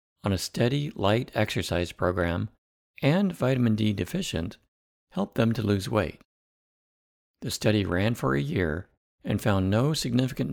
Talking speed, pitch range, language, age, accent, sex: 135 wpm, 85-115 Hz, English, 50-69, American, male